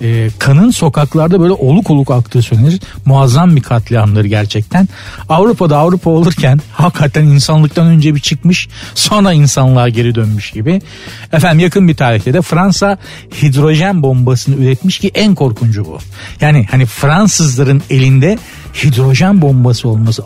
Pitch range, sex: 130-180 Hz, male